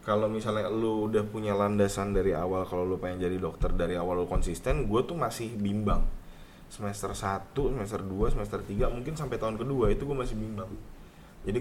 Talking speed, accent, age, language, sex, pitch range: 185 wpm, native, 20-39, Indonesian, male, 95-110 Hz